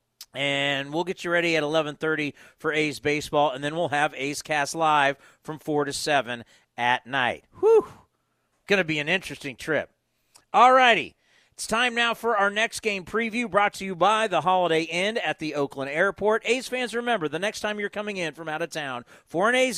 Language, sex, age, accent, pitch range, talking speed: English, male, 40-59, American, 150-210 Hz, 205 wpm